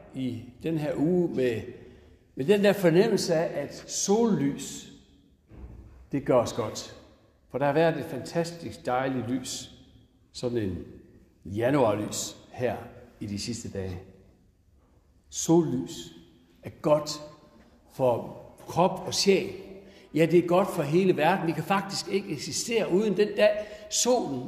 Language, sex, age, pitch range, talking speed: Danish, male, 60-79, 115-185 Hz, 135 wpm